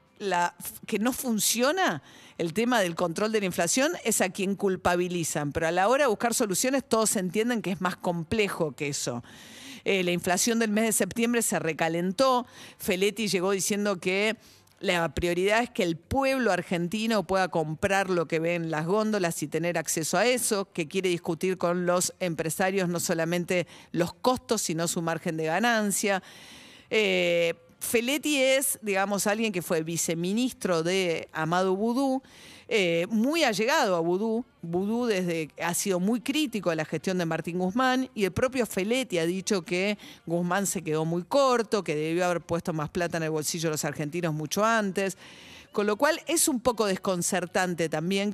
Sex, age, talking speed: female, 50-69, 175 wpm